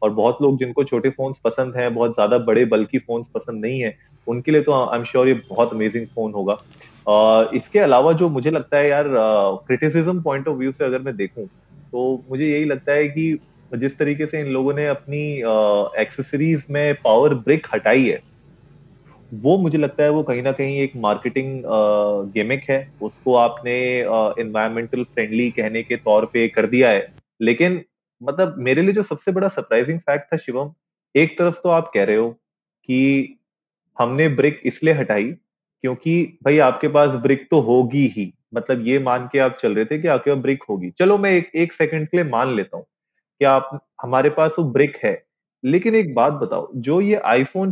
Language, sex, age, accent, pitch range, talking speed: Hindi, male, 30-49, native, 120-160 Hz, 195 wpm